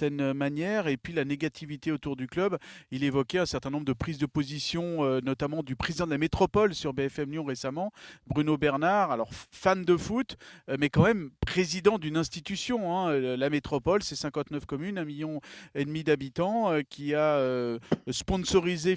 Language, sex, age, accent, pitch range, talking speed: French, male, 40-59, French, 140-175 Hz, 170 wpm